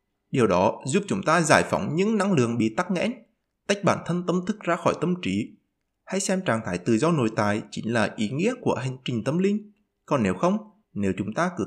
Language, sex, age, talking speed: Vietnamese, male, 20-39, 235 wpm